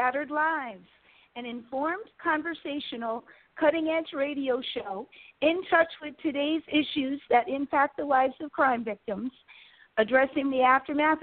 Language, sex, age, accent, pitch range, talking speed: English, female, 50-69, American, 240-290 Hz, 130 wpm